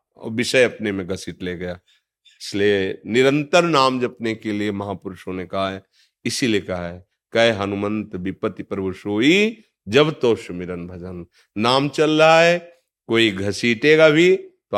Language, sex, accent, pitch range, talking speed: Hindi, male, native, 95-120 Hz, 150 wpm